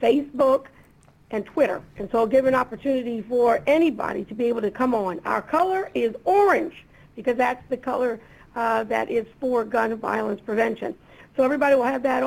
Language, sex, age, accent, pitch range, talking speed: English, female, 50-69, American, 235-270 Hz, 180 wpm